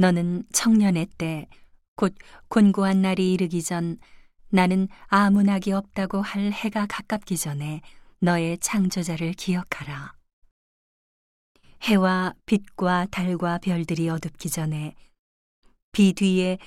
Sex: female